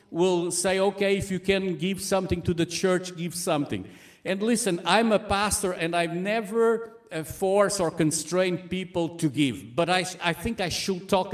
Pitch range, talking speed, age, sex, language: 170-210 Hz, 180 wpm, 50-69, male, English